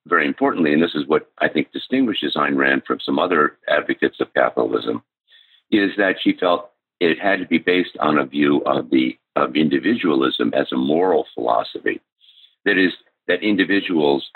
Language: English